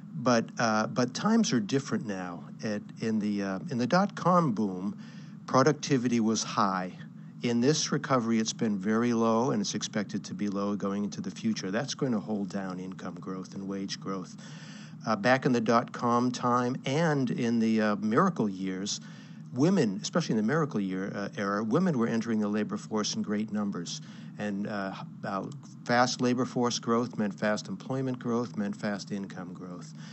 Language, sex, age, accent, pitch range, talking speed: English, male, 60-79, American, 100-125 Hz, 175 wpm